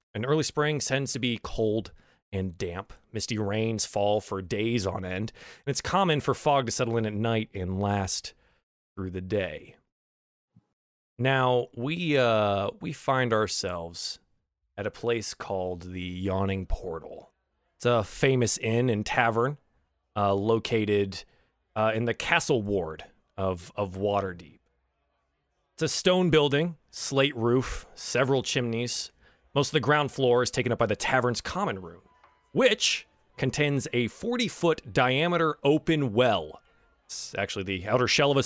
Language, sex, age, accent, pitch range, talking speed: English, male, 30-49, American, 100-140 Hz, 150 wpm